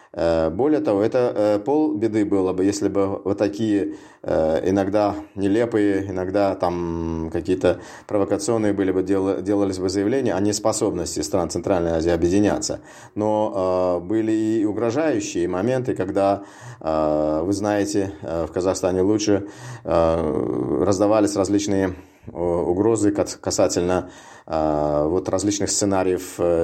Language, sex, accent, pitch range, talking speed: Russian, male, native, 85-105 Hz, 100 wpm